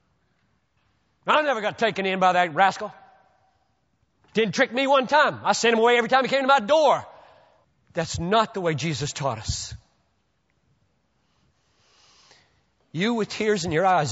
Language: English